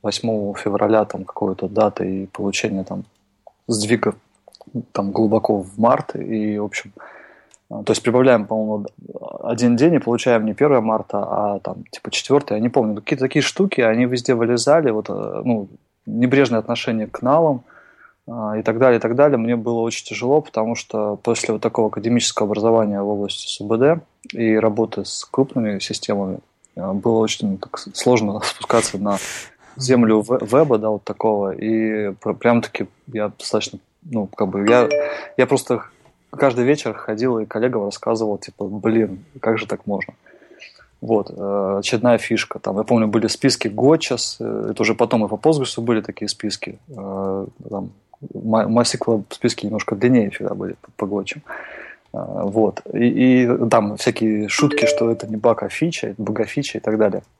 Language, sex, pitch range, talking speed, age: Russian, male, 105-120 Hz, 155 wpm, 20-39